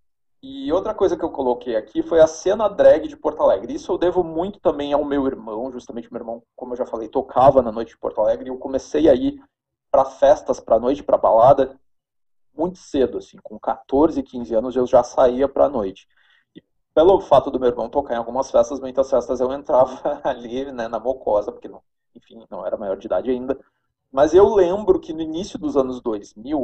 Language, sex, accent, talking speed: Portuguese, male, Brazilian, 210 wpm